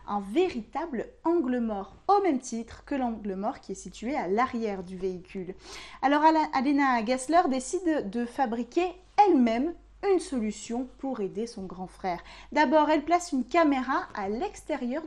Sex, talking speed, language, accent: female, 150 wpm, French, French